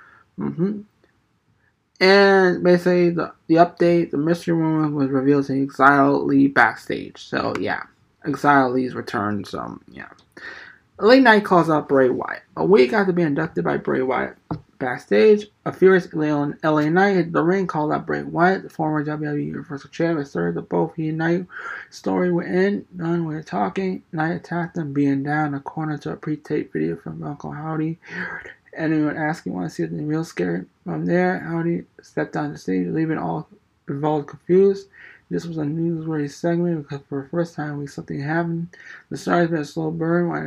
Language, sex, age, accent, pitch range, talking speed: English, male, 20-39, American, 145-170 Hz, 175 wpm